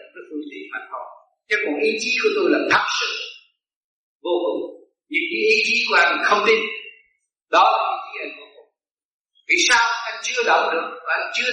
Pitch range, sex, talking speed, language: 240-360 Hz, male, 185 wpm, Vietnamese